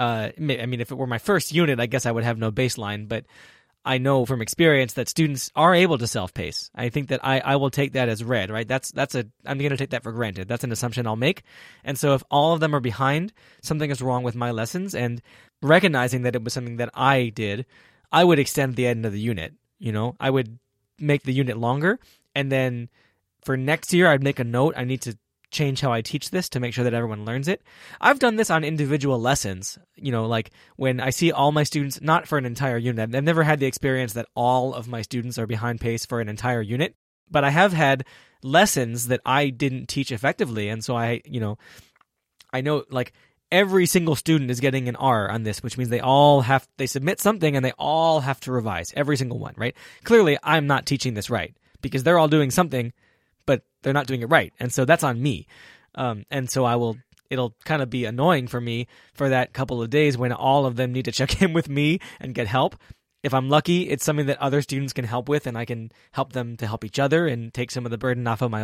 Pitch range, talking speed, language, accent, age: 120-145 Hz, 245 wpm, English, American, 20-39